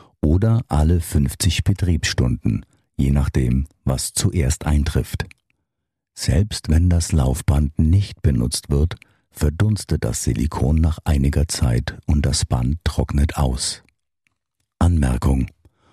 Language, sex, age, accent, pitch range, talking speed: German, male, 50-69, German, 70-95 Hz, 105 wpm